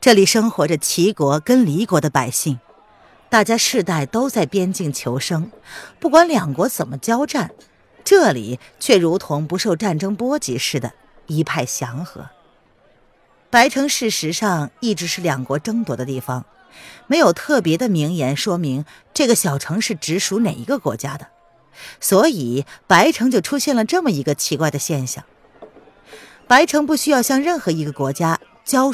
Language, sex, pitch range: Chinese, female, 150-230 Hz